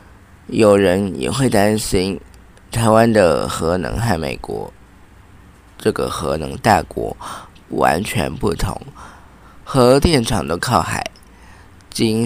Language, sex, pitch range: Chinese, male, 90-110 Hz